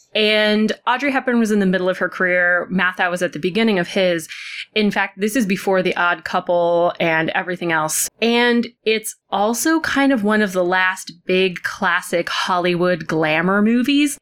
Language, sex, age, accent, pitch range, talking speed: English, female, 20-39, American, 180-215 Hz, 175 wpm